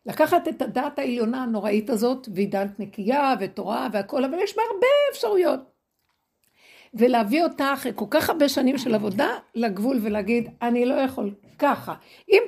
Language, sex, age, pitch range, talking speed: Hebrew, female, 60-79, 225-290 Hz, 150 wpm